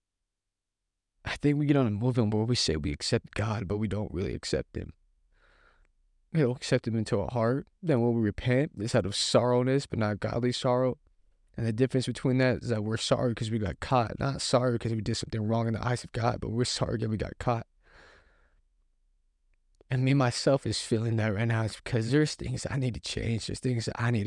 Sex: male